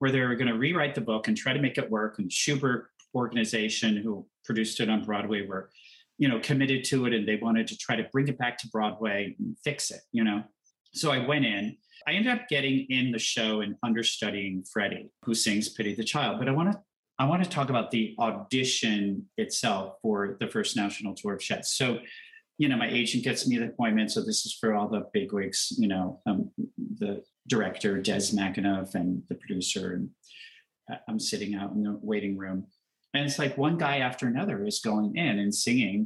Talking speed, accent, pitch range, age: 215 wpm, American, 105-150 Hz, 40-59